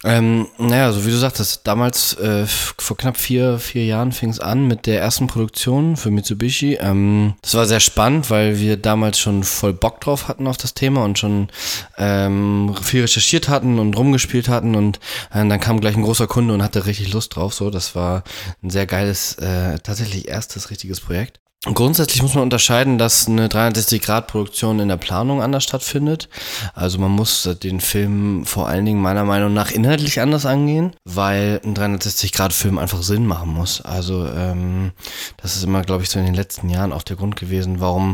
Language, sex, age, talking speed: German, male, 20-39, 190 wpm